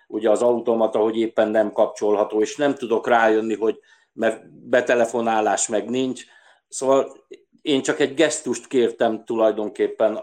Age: 60-79